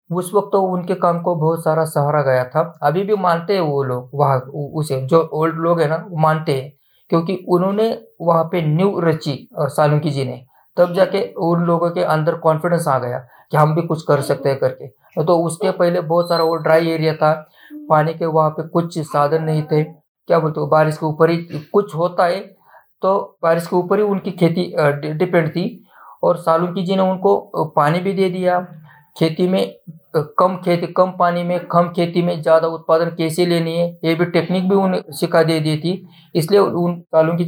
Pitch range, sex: 155-185 Hz, male